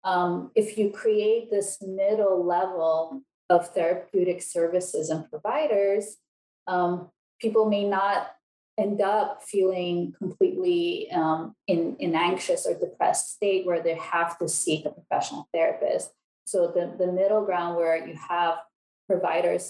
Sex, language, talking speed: female, English, 135 wpm